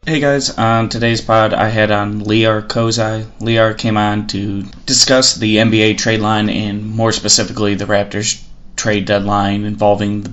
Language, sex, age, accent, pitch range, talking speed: English, male, 20-39, American, 100-110 Hz, 165 wpm